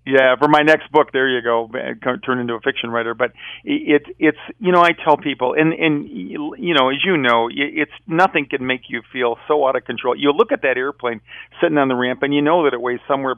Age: 50-69